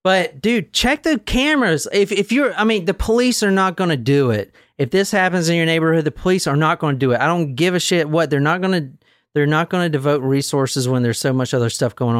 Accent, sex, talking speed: American, male, 270 wpm